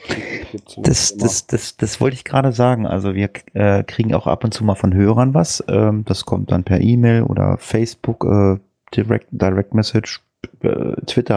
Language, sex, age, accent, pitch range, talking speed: German, male, 30-49, German, 100-125 Hz, 180 wpm